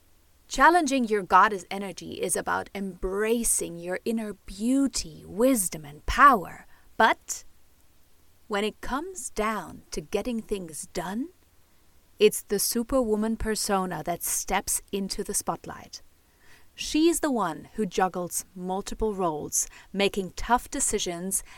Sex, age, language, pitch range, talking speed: female, 30-49, English, 190-245 Hz, 115 wpm